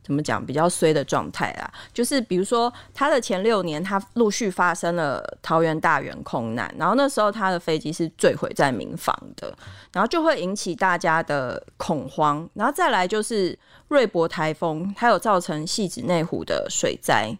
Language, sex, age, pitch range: Chinese, female, 20-39, 160-210 Hz